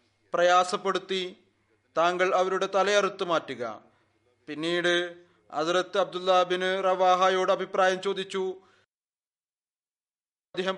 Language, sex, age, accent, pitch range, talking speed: Malayalam, male, 30-49, native, 175-190 Hz, 70 wpm